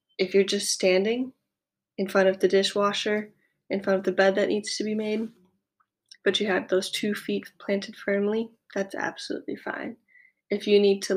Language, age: English, 10-29